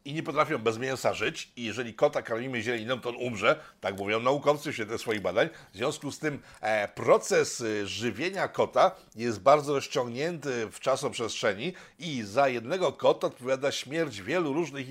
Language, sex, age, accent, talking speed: Polish, male, 60-79, native, 165 wpm